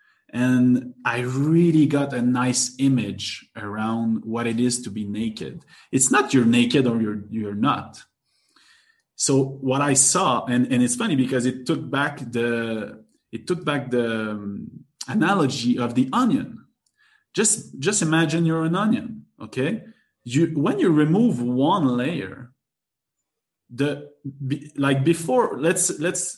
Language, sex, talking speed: English, male, 145 wpm